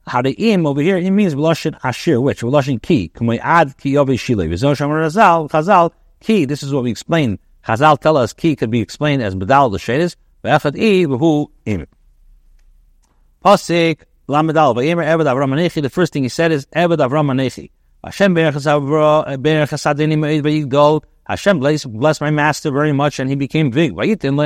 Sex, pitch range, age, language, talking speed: male, 120-155 Hz, 60-79, English, 105 wpm